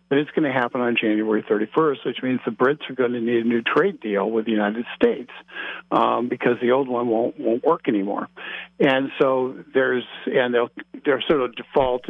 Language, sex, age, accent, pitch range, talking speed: English, male, 50-69, American, 115-130 Hz, 215 wpm